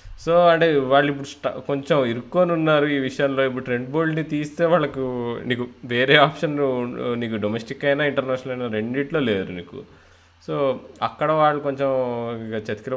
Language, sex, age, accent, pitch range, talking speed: Telugu, male, 20-39, native, 105-140 Hz, 150 wpm